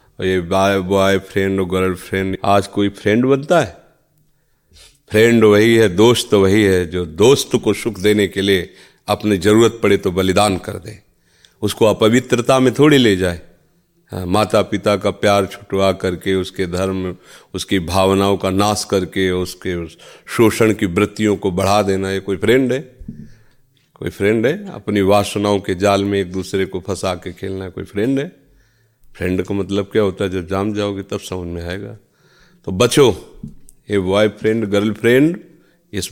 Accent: native